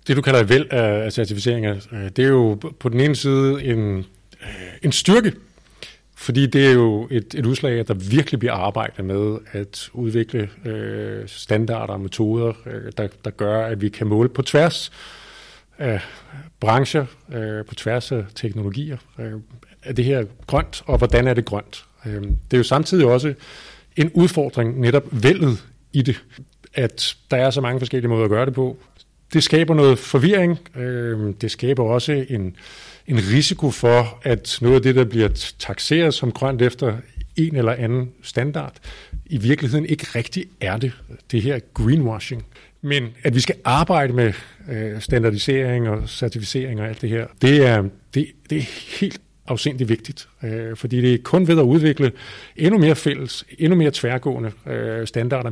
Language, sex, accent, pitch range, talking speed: Danish, male, native, 110-140 Hz, 160 wpm